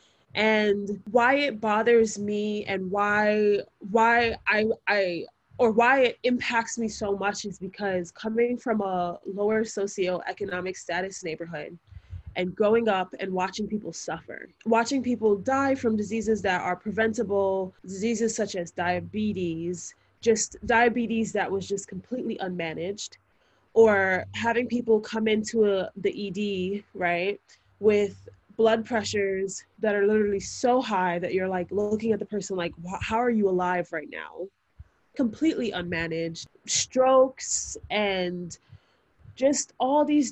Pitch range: 185-230 Hz